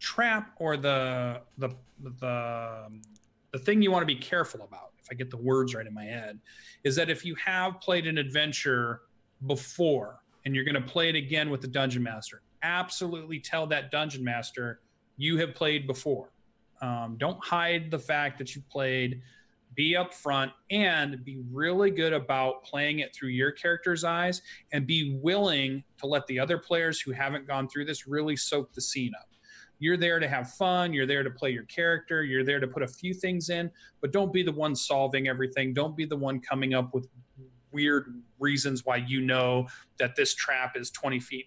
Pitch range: 130-165 Hz